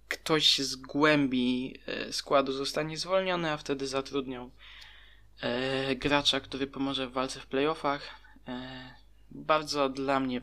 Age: 20-39